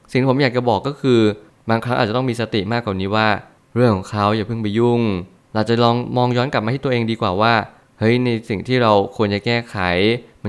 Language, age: Thai, 20-39